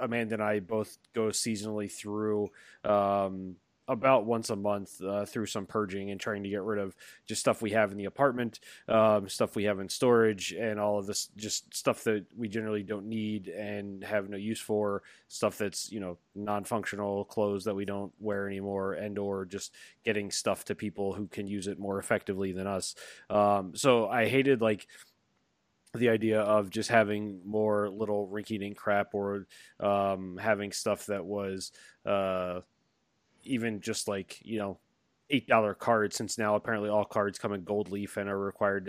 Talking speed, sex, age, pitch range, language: 180 wpm, male, 20-39, 100-110 Hz, English